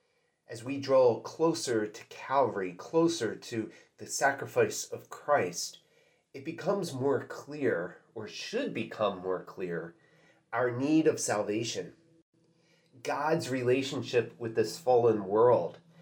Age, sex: 30-49, male